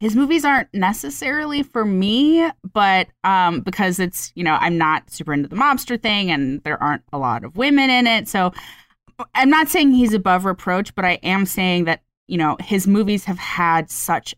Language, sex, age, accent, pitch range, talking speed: English, female, 20-39, American, 155-205 Hz, 195 wpm